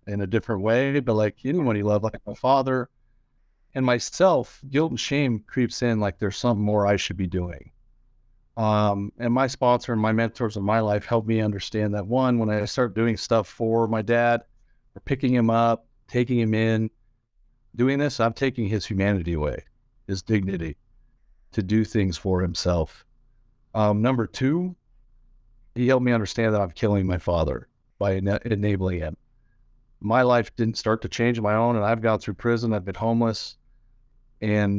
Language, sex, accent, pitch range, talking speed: English, male, American, 105-120 Hz, 185 wpm